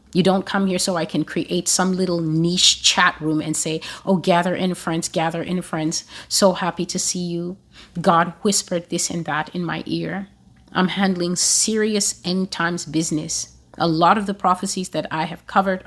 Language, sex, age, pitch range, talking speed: English, female, 30-49, 160-190 Hz, 190 wpm